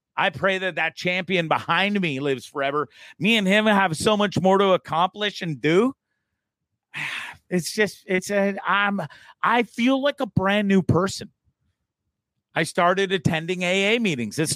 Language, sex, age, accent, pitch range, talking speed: English, male, 40-59, American, 150-195 Hz, 155 wpm